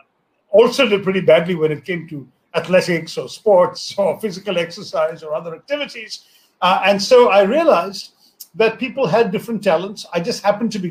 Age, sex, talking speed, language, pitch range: 50-69, male, 175 wpm, English, 190-235 Hz